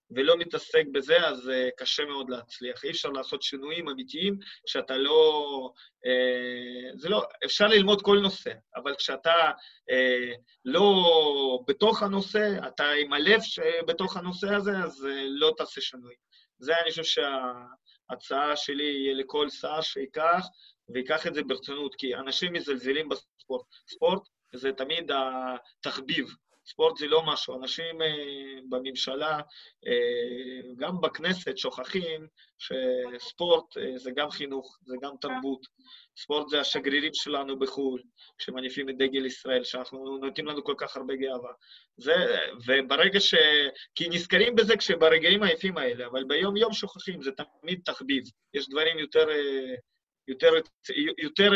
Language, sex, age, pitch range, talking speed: Hebrew, male, 30-49, 135-200 Hz, 130 wpm